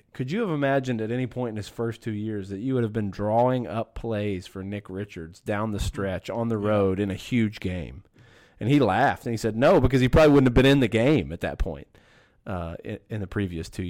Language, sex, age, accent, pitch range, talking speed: English, male, 30-49, American, 105-125 Hz, 250 wpm